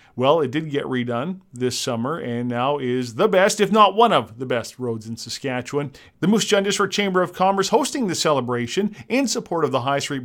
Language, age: English, 40-59